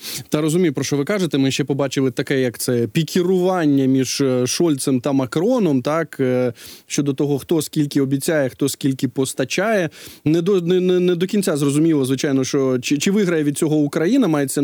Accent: native